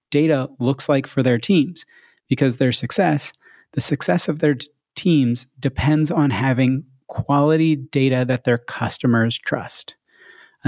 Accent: American